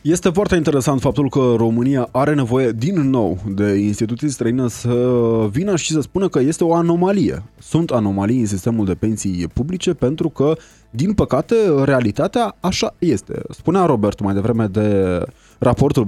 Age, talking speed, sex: 20-39, 155 wpm, male